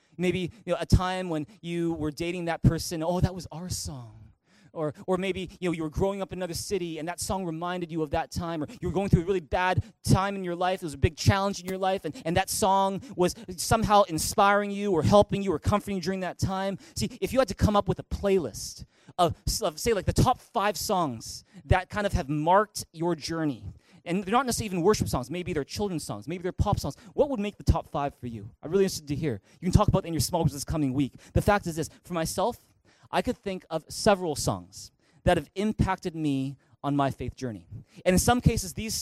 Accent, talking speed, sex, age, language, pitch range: American, 250 wpm, male, 20-39, English, 150-190 Hz